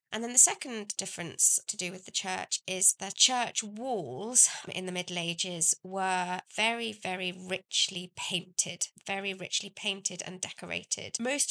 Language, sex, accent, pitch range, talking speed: English, female, British, 175-200 Hz, 150 wpm